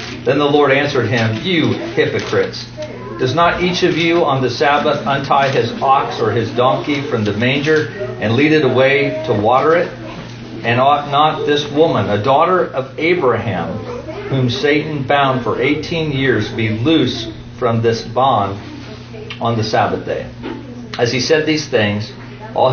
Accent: American